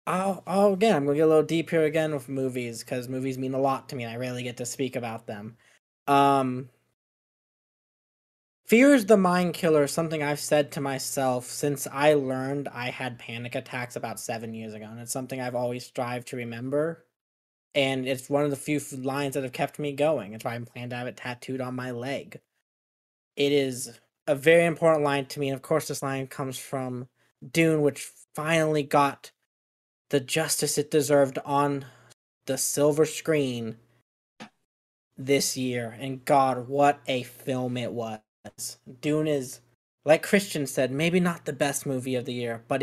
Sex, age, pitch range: male, 20-39, 125-150 Hz